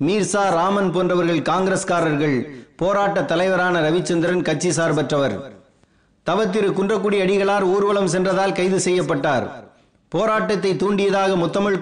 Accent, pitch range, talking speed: native, 175-200 Hz, 100 wpm